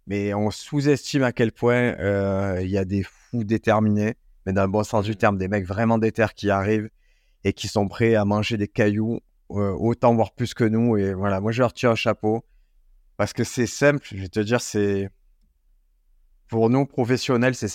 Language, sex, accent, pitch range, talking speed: French, male, French, 100-115 Hz, 205 wpm